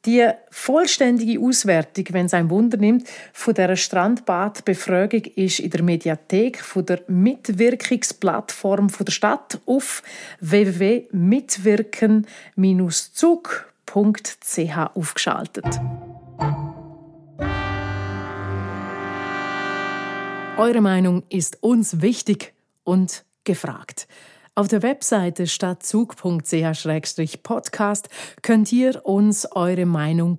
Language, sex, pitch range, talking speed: German, female, 175-235 Hz, 80 wpm